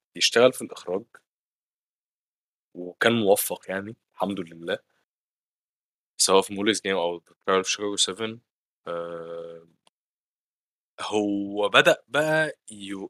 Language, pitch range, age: Arabic, 90-135 Hz, 20-39